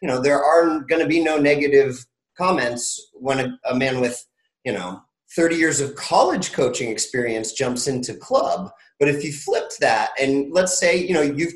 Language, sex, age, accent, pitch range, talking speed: English, male, 30-49, American, 125-165 Hz, 190 wpm